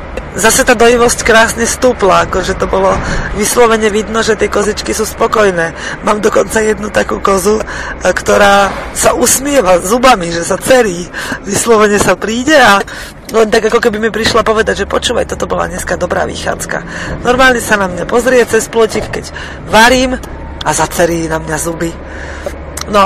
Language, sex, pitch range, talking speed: Slovak, female, 185-220 Hz, 160 wpm